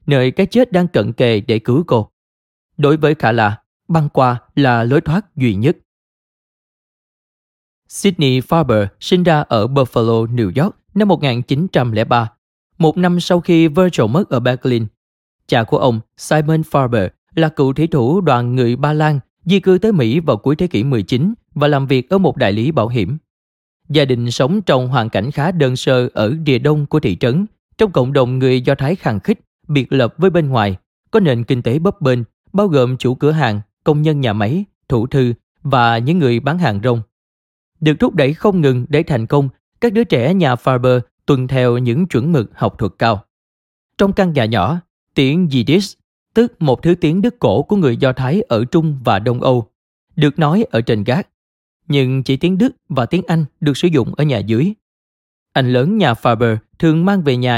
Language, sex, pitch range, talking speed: Vietnamese, male, 120-165 Hz, 195 wpm